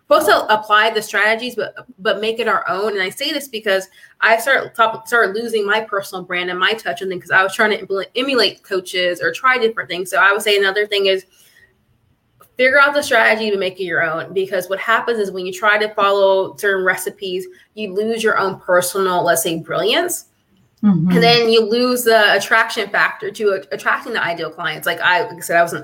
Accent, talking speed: American, 220 wpm